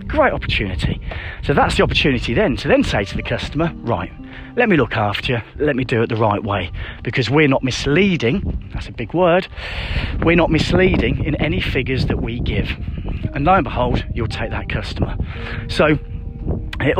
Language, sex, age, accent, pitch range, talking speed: English, male, 40-59, British, 110-160 Hz, 185 wpm